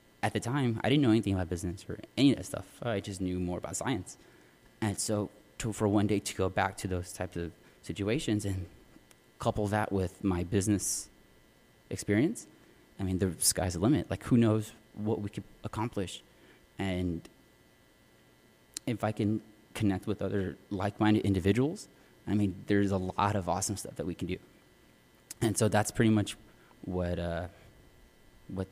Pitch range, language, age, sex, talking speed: 90-105 Hz, English, 20-39, male, 170 wpm